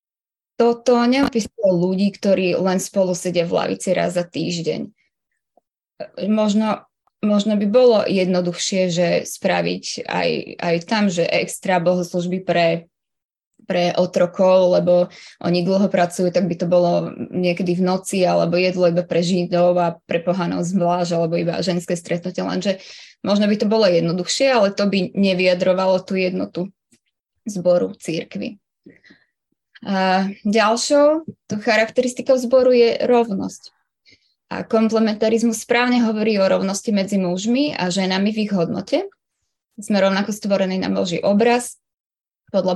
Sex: female